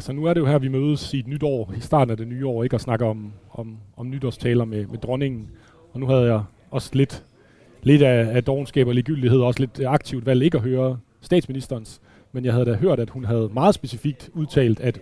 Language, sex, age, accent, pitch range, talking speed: Danish, male, 30-49, native, 120-145 Hz, 235 wpm